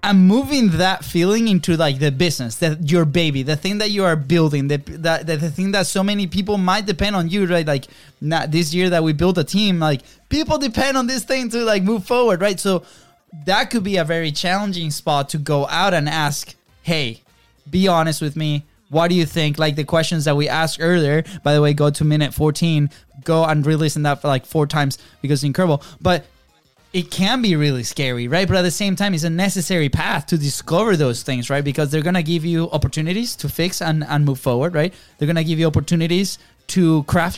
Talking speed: 230 wpm